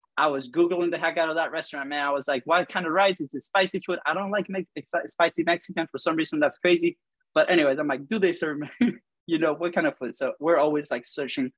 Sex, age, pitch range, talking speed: male, 20-39, 135-180 Hz, 260 wpm